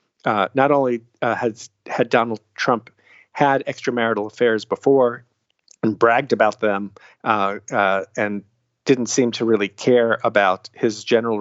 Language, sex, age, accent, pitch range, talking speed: English, male, 50-69, American, 110-125 Hz, 140 wpm